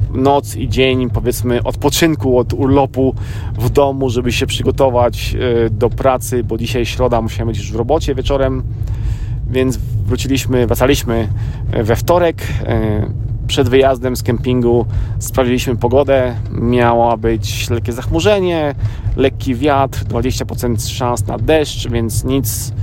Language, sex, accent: Polish, male, native